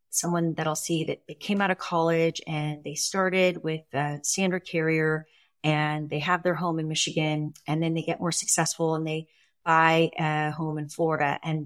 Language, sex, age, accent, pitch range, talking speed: English, female, 30-49, American, 155-180 Hz, 195 wpm